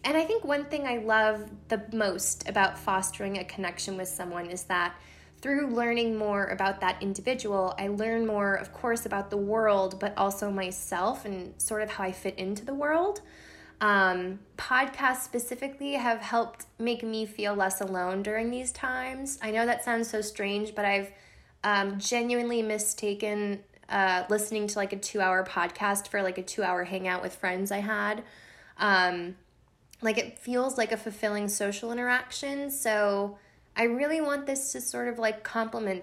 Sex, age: female, 20-39